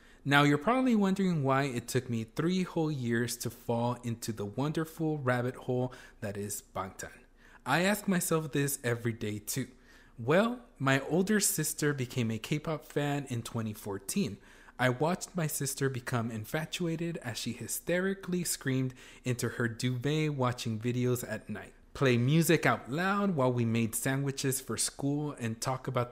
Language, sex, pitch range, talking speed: English, male, 120-160 Hz, 155 wpm